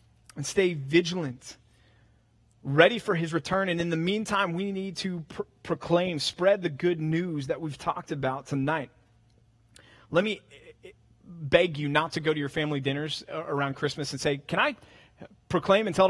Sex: male